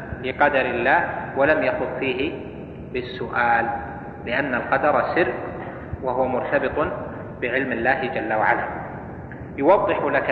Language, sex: Arabic, male